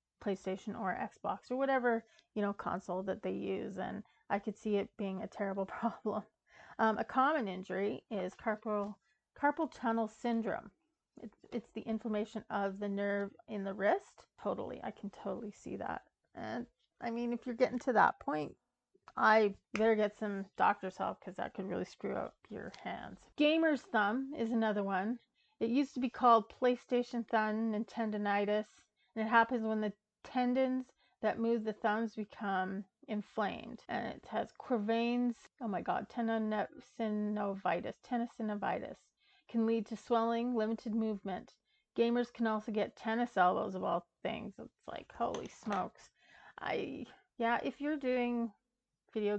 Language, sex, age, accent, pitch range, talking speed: English, female, 30-49, American, 205-240 Hz, 155 wpm